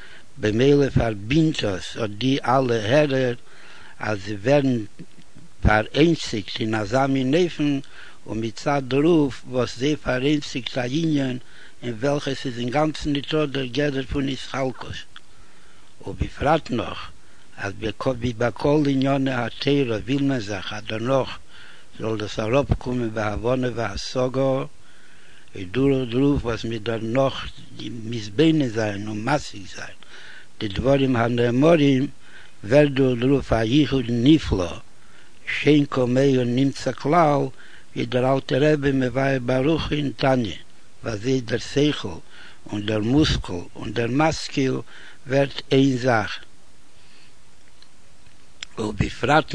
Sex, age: male, 60-79